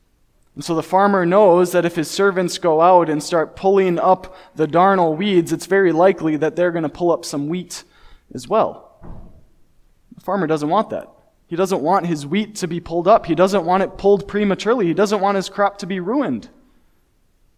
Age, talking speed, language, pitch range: 20-39, 200 wpm, English, 145-180 Hz